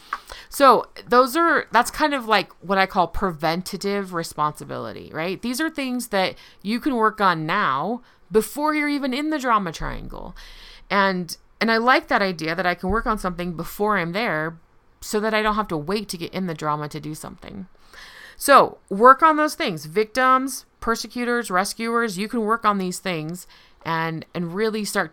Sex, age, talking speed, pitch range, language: female, 30-49, 185 wpm, 165-225 Hz, English